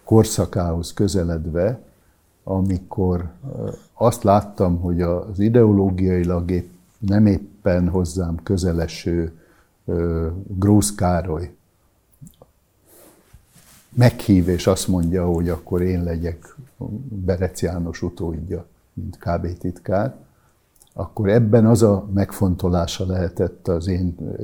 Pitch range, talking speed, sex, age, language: 90-100 Hz, 90 wpm, male, 60-79, Hungarian